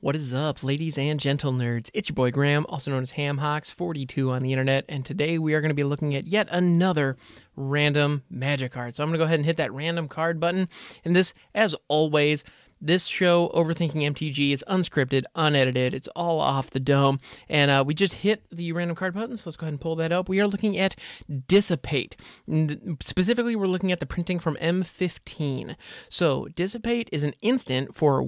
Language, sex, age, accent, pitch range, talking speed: English, male, 20-39, American, 140-180 Hz, 205 wpm